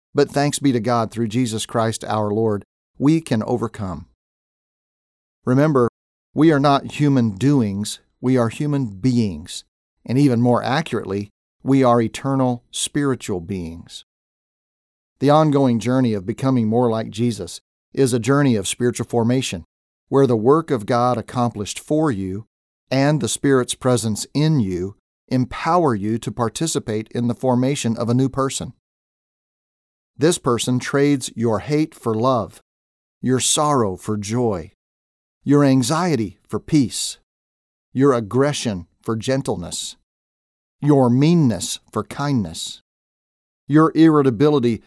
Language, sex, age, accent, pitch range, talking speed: English, male, 50-69, American, 100-135 Hz, 130 wpm